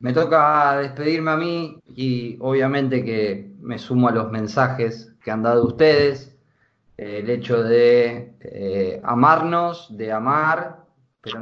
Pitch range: 115-145 Hz